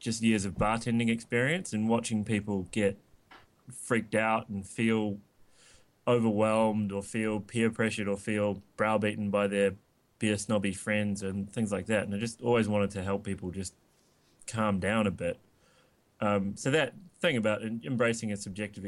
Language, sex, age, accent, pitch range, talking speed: English, male, 20-39, Australian, 100-115 Hz, 160 wpm